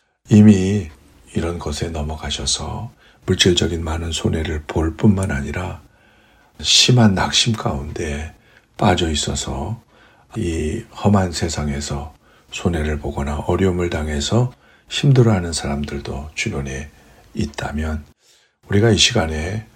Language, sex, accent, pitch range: Korean, male, native, 75-105 Hz